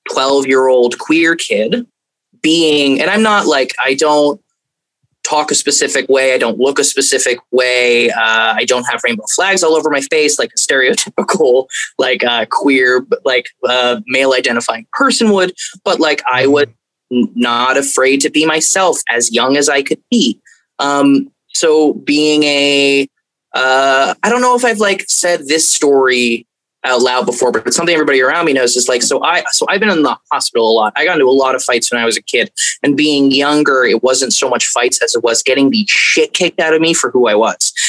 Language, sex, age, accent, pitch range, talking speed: English, male, 20-39, American, 130-180 Hz, 205 wpm